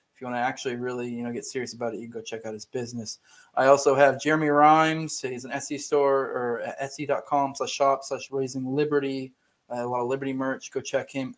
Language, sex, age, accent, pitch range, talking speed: English, male, 20-39, American, 130-155 Hz, 235 wpm